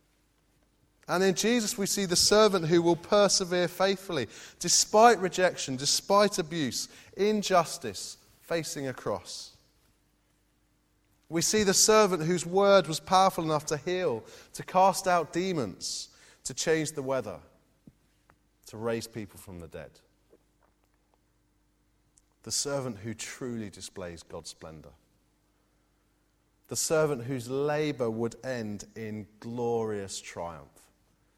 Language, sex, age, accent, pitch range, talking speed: English, male, 30-49, British, 110-180 Hz, 115 wpm